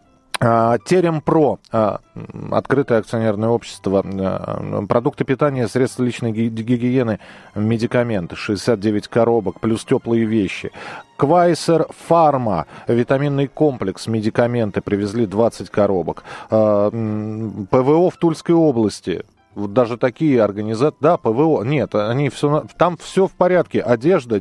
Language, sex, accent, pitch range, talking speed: Russian, male, native, 115-150 Hz, 105 wpm